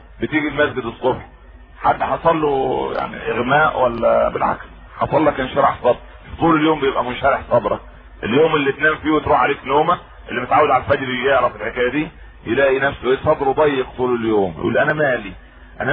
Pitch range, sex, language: 120-155 Hz, male, Arabic